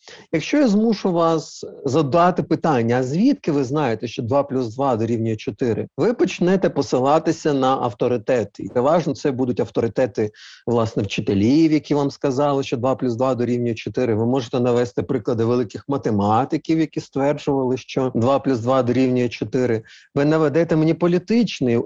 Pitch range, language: 125-165 Hz, Ukrainian